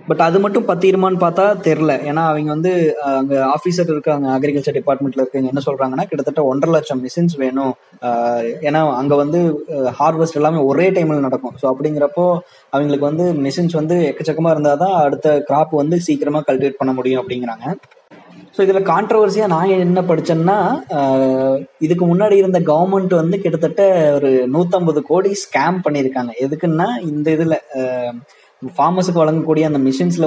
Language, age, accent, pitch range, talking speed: Tamil, 20-39, native, 140-175 Hz, 130 wpm